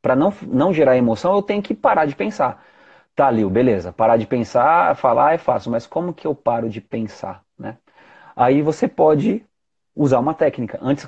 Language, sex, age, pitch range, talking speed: Portuguese, male, 30-49, 125-170 Hz, 190 wpm